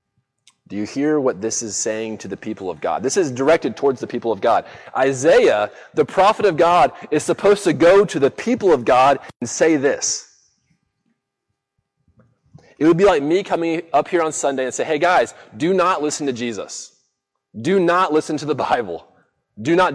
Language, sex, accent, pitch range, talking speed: English, male, American, 130-175 Hz, 195 wpm